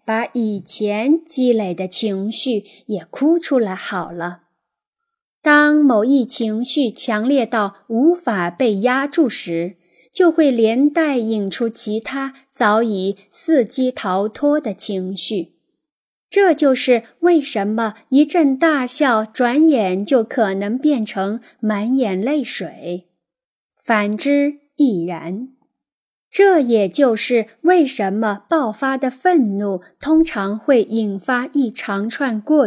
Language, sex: Chinese, female